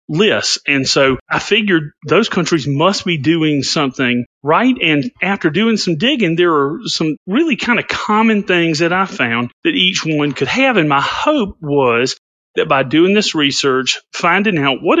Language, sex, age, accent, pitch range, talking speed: English, male, 40-59, American, 140-185 Hz, 180 wpm